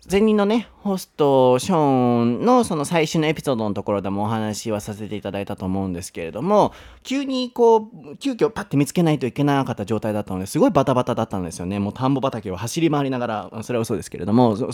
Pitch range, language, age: 115-160 Hz, Japanese, 30-49